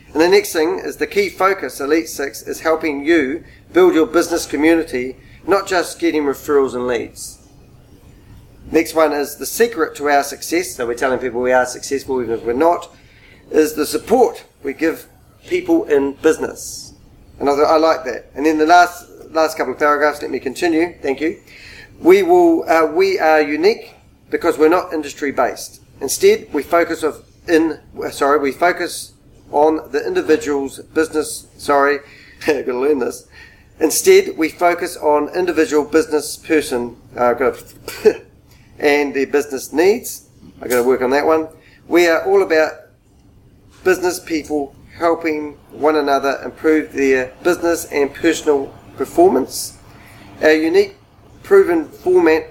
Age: 40-59